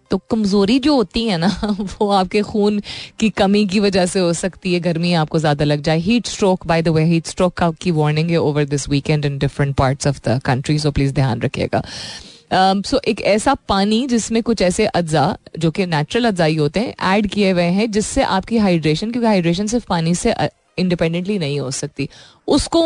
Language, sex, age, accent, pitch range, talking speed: Hindi, female, 30-49, native, 155-210 Hz, 200 wpm